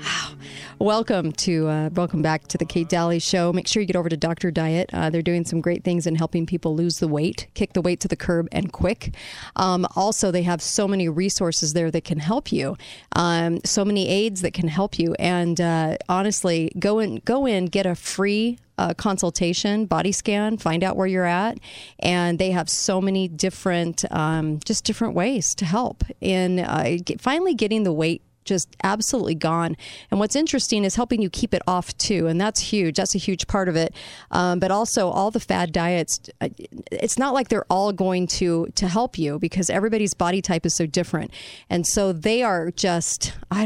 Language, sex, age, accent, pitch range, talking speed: English, female, 40-59, American, 165-200 Hz, 205 wpm